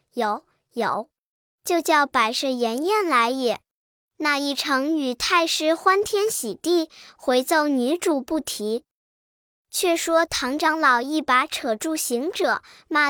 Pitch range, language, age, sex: 260-355 Hz, Chinese, 10-29, male